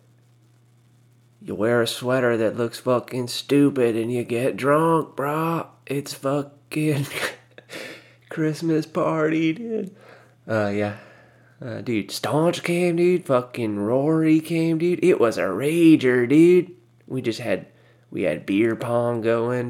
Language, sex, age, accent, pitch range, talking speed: English, male, 20-39, American, 100-125 Hz, 130 wpm